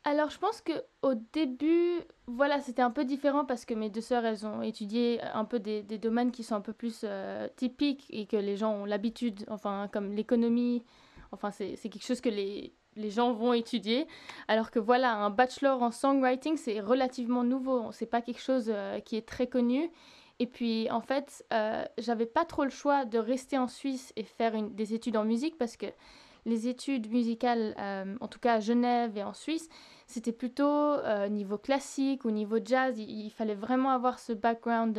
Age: 20-39